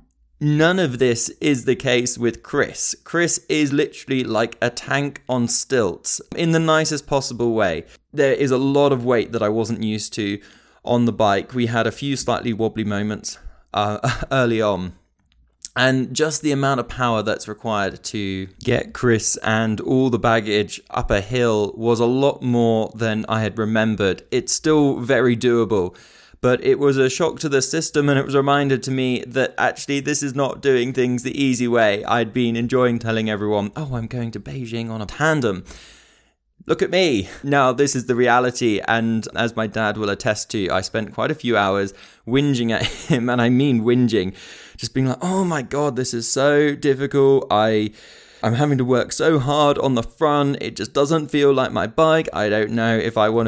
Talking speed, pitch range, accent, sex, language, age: 195 wpm, 110-140 Hz, British, male, English, 20-39